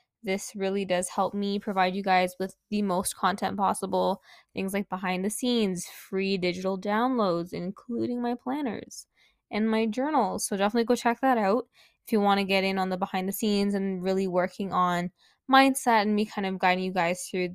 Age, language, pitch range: 10-29, English, 185-215 Hz